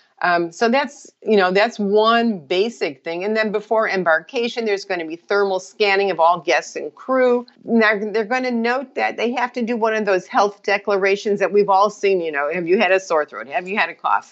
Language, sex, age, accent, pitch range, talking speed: English, female, 50-69, American, 180-225 Hz, 230 wpm